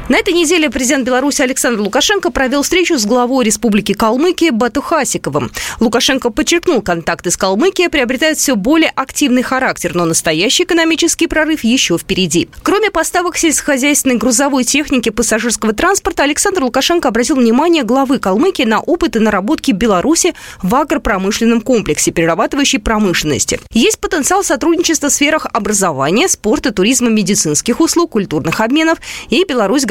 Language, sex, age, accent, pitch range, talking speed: Russian, female, 20-39, native, 200-305 Hz, 135 wpm